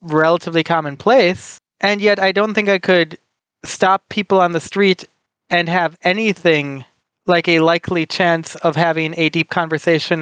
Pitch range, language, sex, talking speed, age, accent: 160-195 Hz, English, male, 155 wpm, 30-49, American